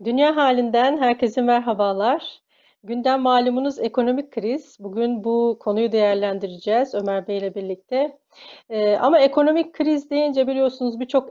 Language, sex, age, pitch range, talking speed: Turkish, female, 40-59, 210-255 Hz, 115 wpm